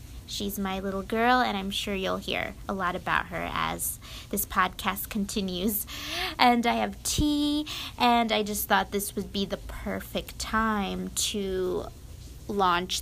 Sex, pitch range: female, 195-230 Hz